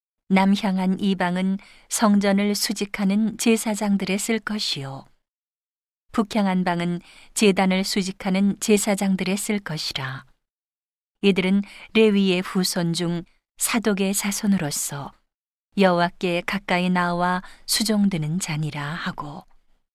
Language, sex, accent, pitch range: Korean, female, native, 170-205 Hz